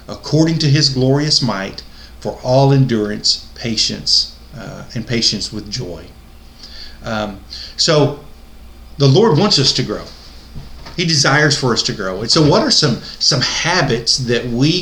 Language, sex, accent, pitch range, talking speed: English, male, American, 105-150 Hz, 150 wpm